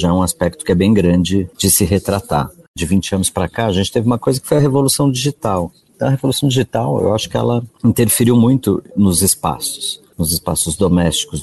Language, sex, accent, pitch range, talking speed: Portuguese, male, Brazilian, 85-115 Hz, 215 wpm